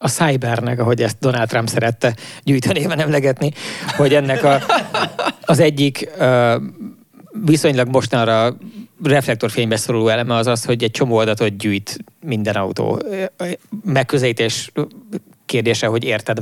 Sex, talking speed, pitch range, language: male, 120 wpm, 115-140 Hz, English